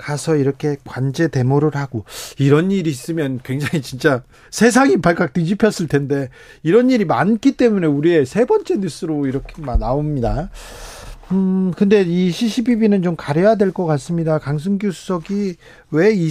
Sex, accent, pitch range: male, native, 140-180 Hz